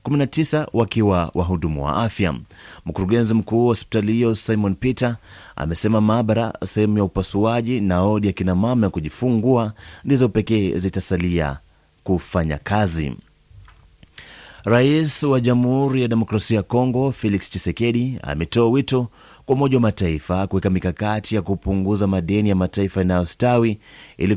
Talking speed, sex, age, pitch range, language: 130 wpm, male, 30-49, 90-115 Hz, Swahili